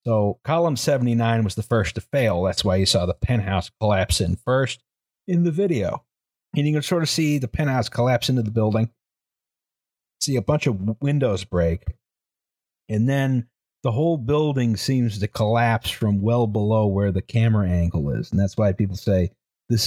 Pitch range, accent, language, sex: 100-130 Hz, American, English, male